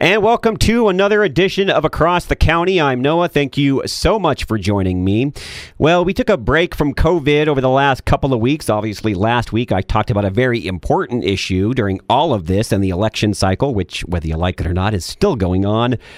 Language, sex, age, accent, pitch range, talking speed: English, male, 40-59, American, 95-140 Hz, 225 wpm